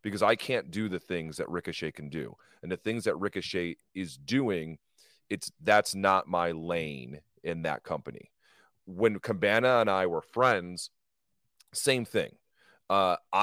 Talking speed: 150 wpm